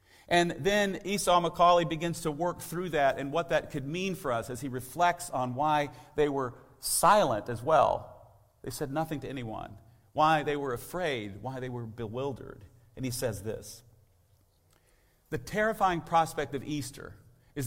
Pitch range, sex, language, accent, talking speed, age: 95-140 Hz, male, English, American, 165 wpm, 50-69